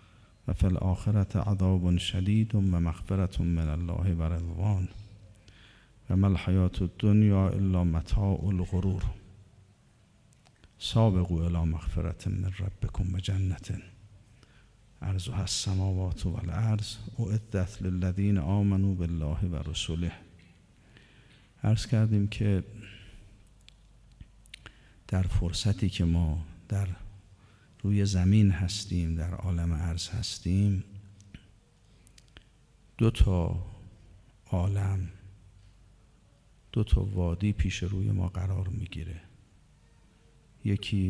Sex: male